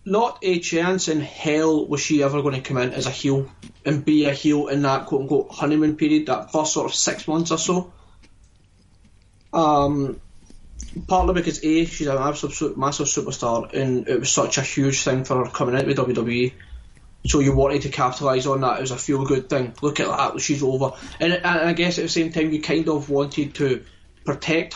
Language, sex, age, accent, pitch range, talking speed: English, male, 20-39, British, 130-155 Hz, 205 wpm